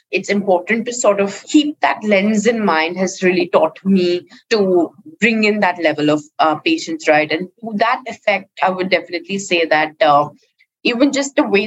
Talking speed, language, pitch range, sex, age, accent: 190 wpm, English, 175-220 Hz, female, 20-39, Indian